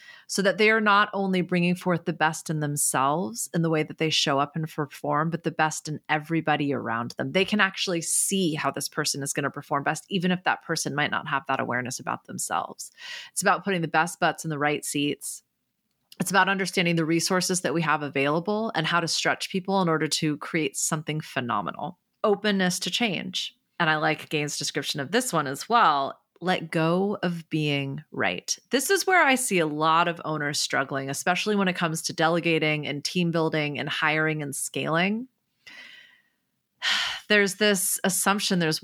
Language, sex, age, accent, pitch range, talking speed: English, female, 30-49, American, 155-195 Hz, 195 wpm